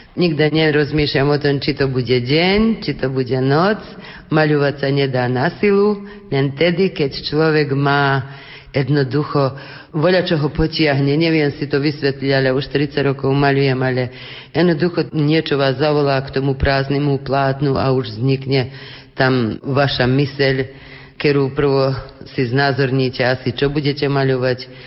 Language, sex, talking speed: Slovak, female, 135 wpm